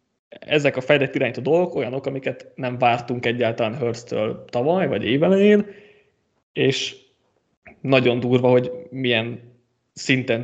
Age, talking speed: 20-39, 120 wpm